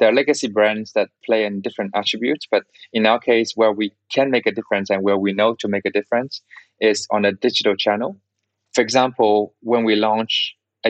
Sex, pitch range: male, 105-130 Hz